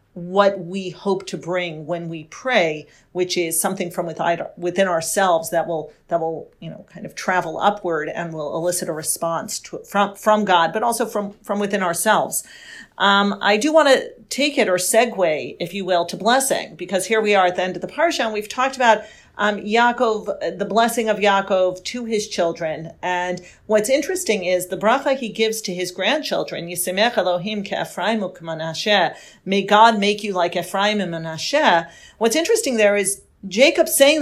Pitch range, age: 180-225 Hz, 40-59